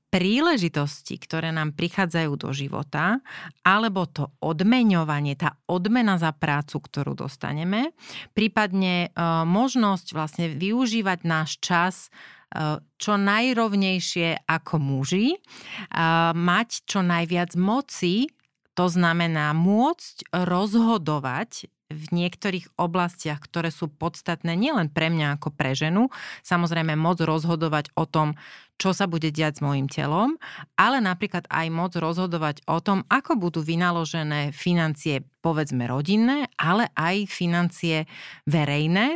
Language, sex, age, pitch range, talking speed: Slovak, female, 30-49, 155-195 Hz, 115 wpm